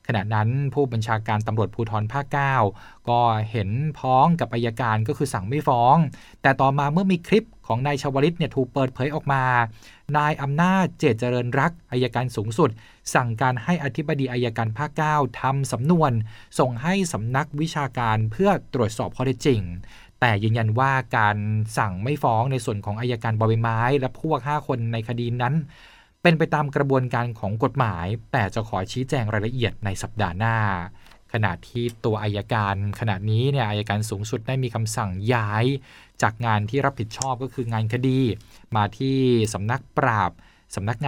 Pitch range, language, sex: 110-140 Hz, Thai, male